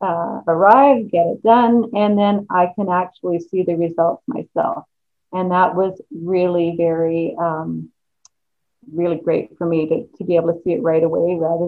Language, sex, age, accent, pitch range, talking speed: English, female, 40-59, American, 170-210 Hz, 175 wpm